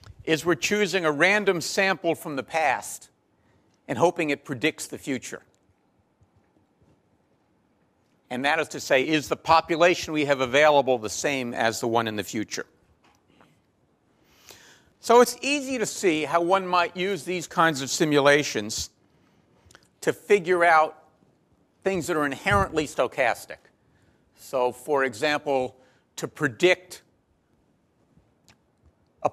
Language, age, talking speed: English, 50-69, 125 wpm